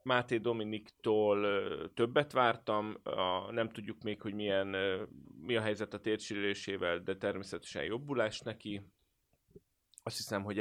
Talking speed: 125 wpm